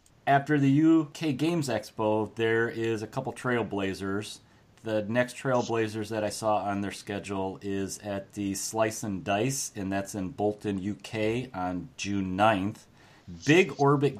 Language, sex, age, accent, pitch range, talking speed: English, male, 30-49, American, 105-130 Hz, 150 wpm